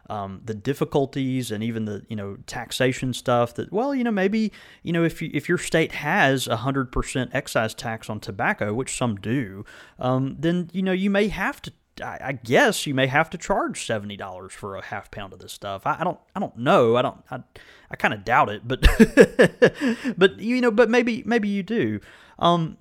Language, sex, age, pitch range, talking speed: English, male, 30-49, 110-145 Hz, 215 wpm